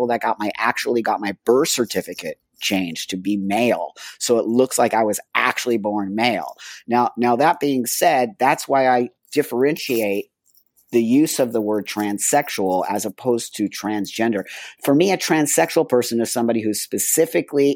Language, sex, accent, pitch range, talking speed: English, male, American, 100-125 Hz, 165 wpm